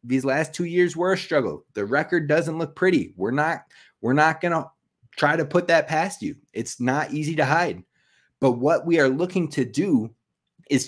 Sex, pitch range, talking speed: male, 135-175 Hz, 205 wpm